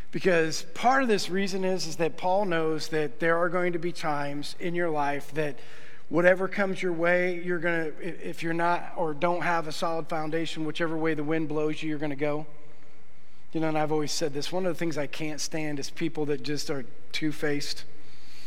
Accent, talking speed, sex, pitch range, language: American, 210 wpm, male, 150-200 Hz, English